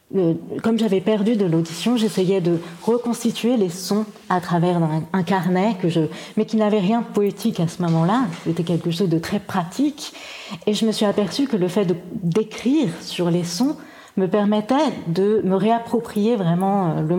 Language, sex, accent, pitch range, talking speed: French, female, French, 175-225 Hz, 180 wpm